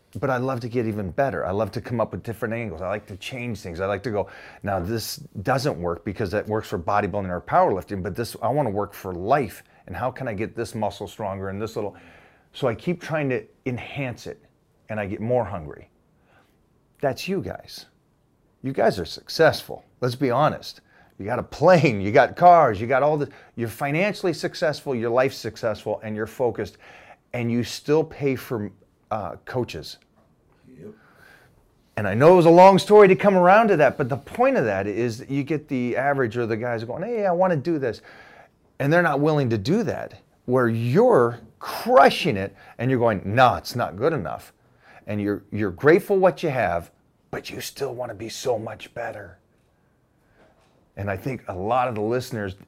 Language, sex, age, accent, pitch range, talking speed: English, male, 30-49, American, 105-140 Hz, 205 wpm